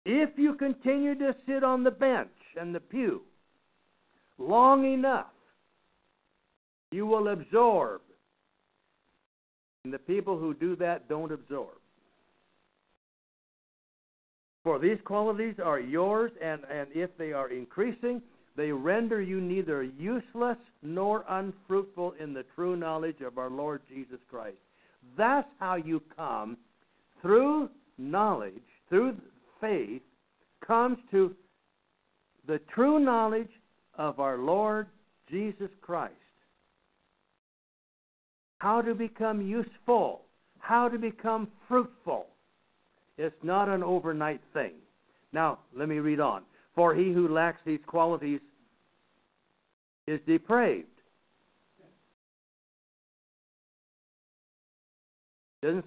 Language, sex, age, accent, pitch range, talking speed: English, male, 60-79, American, 160-235 Hz, 105 wpm